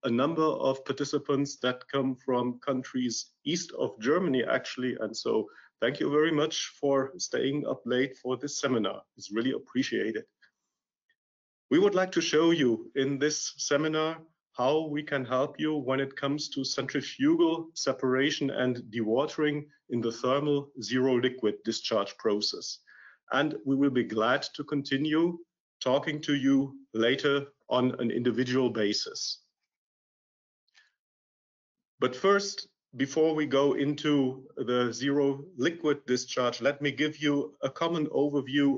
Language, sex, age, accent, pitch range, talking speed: English, male, 40-59, German, 125-150 Hz, 140 wpm